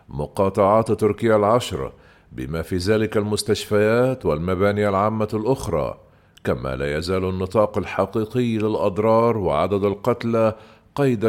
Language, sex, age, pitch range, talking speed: Arabic, male, 50-69, 95-110 Hz, 100 wpm